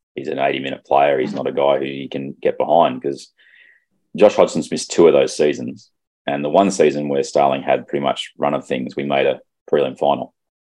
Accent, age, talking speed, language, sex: Australian, 30-49, 215 wpm, English, male